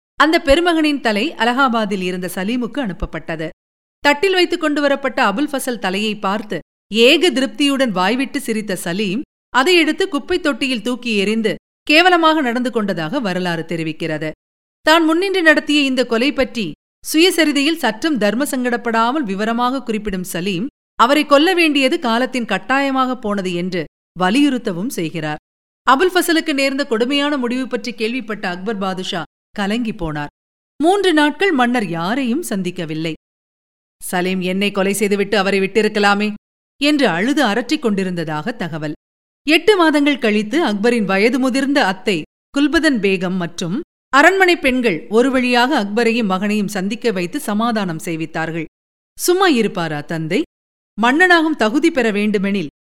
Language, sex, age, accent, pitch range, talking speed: Tamil, female, 50-69, native, 190-285 Hz, 115 wpm